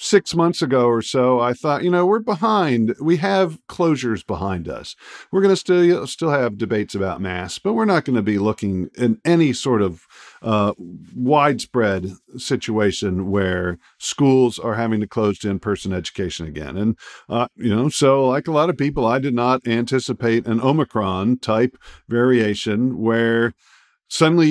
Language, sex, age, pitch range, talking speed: English, male, 50-69, 110-155 Hz, 165 wpm